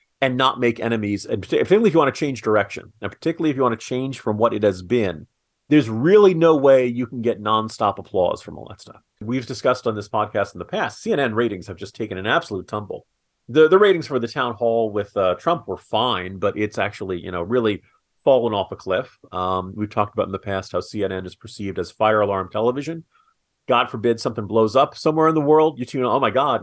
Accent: American